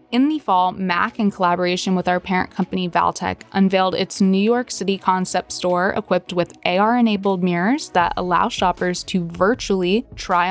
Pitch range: 175-200 Hz